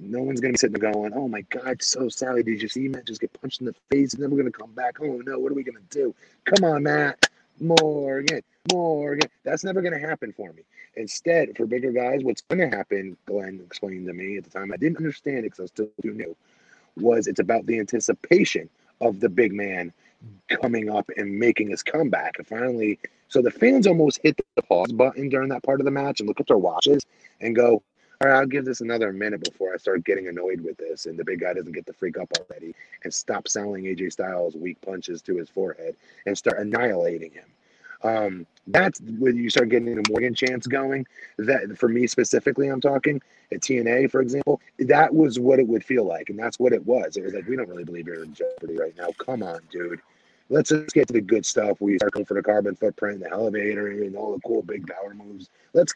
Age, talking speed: 30-49, 240 wpm